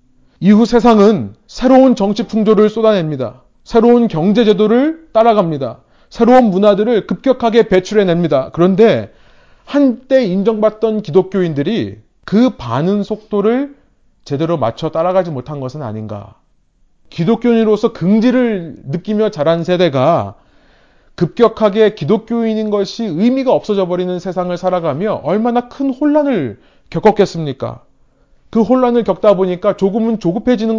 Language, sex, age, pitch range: Korean, male, 30-49, 170-230 Hz